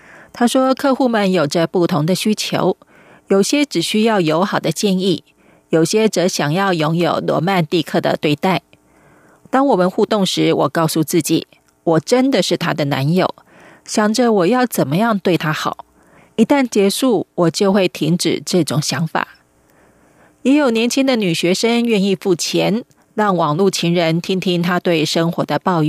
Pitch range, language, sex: 170-225 Hz, German, female